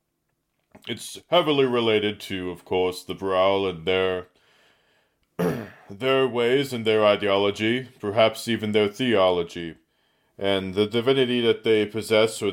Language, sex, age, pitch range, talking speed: English, male, 30-49, 100-120 Hz, 125 wpm